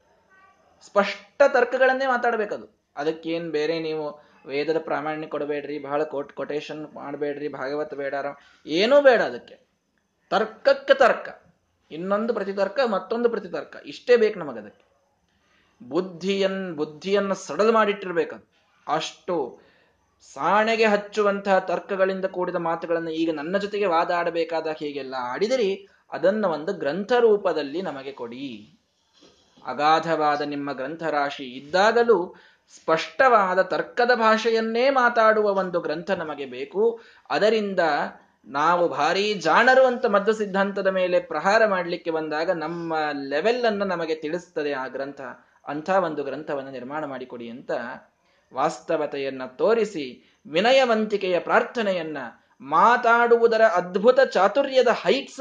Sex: male